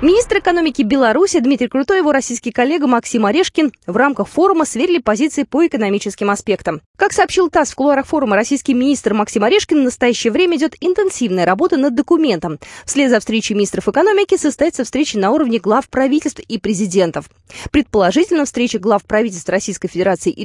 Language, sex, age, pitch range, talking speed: Russian, female, 20-39, 205-300 Hz, 165 wpm